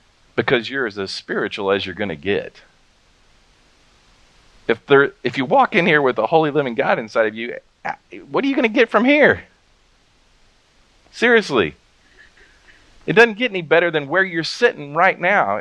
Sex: male